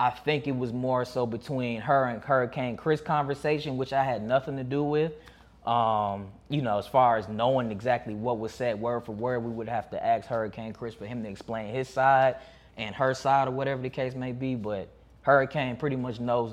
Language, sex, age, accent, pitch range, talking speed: English, male, 10-29, American, 120-140 Hz, 220 wpm